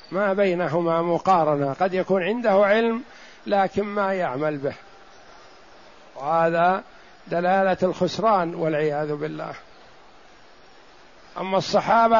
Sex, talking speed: male, 90 wpm